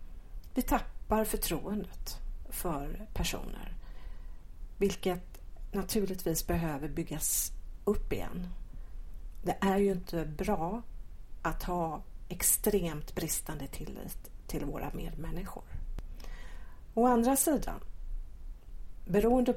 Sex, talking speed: female, 85 wpm